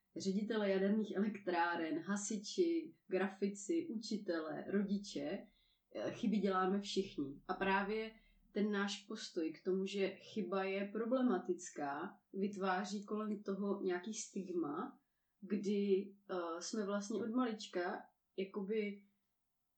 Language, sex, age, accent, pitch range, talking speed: Czech, female, 30-49, native, 185-220 Hz, 95 wpm